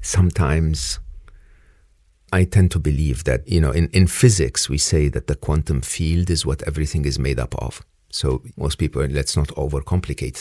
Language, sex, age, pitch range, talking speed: English, male, 50-69, 70-90 Hz, 175 wpm